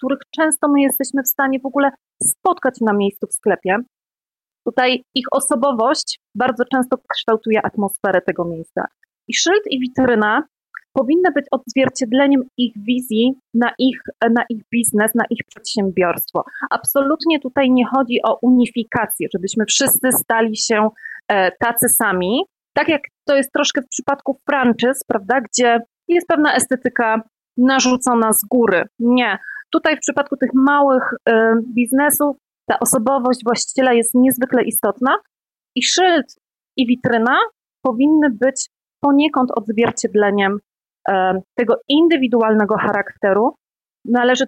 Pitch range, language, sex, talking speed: 225-275 Hz, Polish, female, 125 wpm